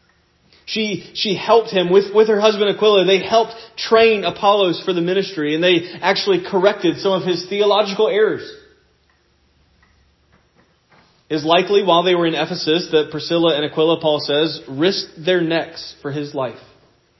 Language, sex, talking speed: English, male, 155 wpm